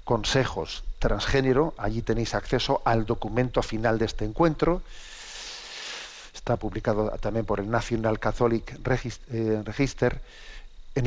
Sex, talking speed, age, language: male, 110 wpm, 50-69, Spanish